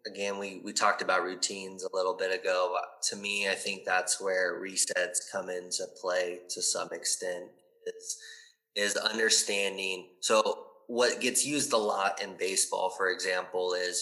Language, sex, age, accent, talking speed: English, male, 20-39, American, 160 wpm